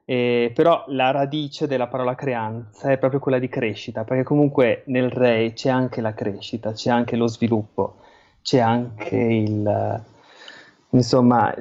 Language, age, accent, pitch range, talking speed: Italian, 20-39, native, 115-135 Hz, 145 wpm